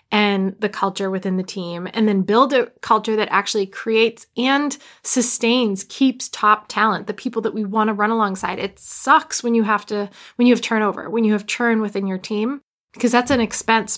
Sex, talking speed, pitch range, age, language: female, 200 wpm, 205-245 Hz, 20-39, English